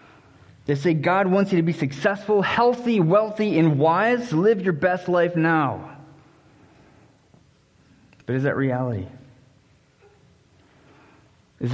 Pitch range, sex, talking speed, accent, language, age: 115-150 Hz, male, 110 wpm, American, English, 20-39